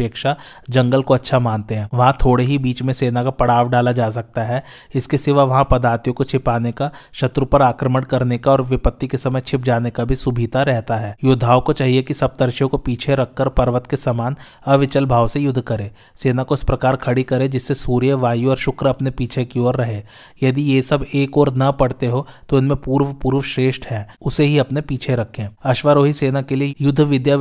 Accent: native